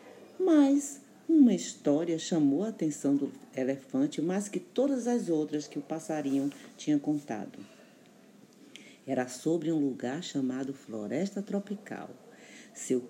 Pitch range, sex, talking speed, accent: 135-210 Hz, female, 120 wpm, Brazilian